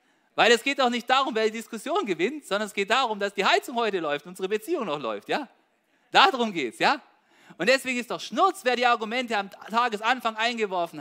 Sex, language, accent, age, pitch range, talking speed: male, German, German, 40-59, 195-255 Hz, 215 wpm